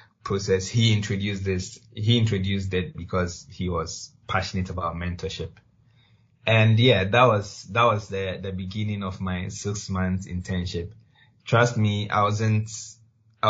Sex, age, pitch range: male, 20-39, 90-105 Hz